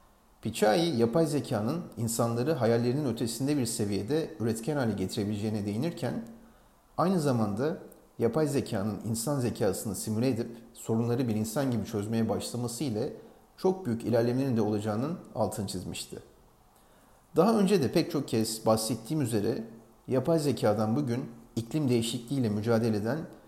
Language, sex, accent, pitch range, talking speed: Turkish, male, native, 110-135 Hz, 125 wpm